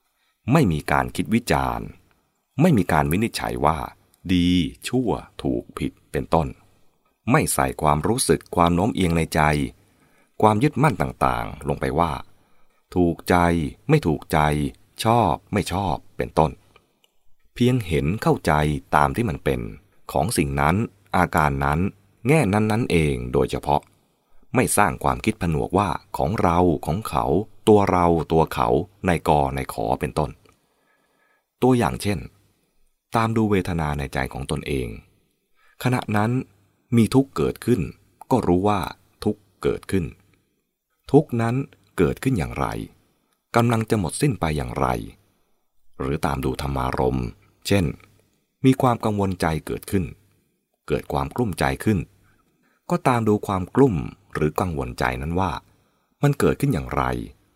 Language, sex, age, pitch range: English, male, 20-39, 75-110 Hz